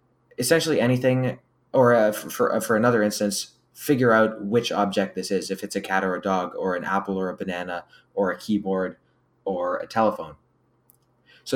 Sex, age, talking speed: male, 20-39, 170 wpm